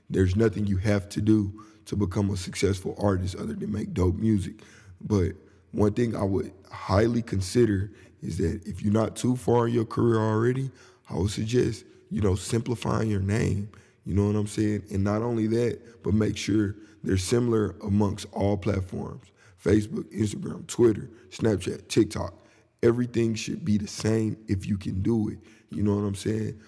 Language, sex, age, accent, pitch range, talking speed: English, male, 20-39, American, 100-115 Hz, 180 wpm